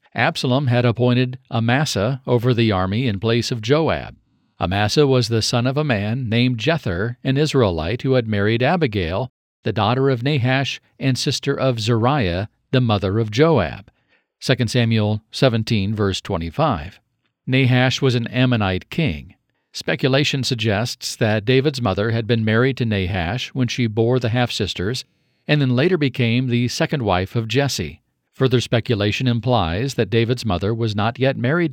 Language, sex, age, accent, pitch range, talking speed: English, male, 50-69, American, 110-130 Hz, 155 wpm